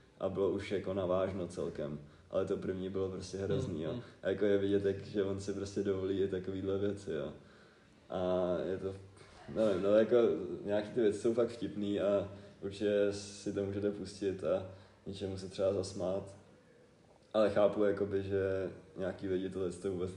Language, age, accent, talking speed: Czech, 20-39, native, 175 wpm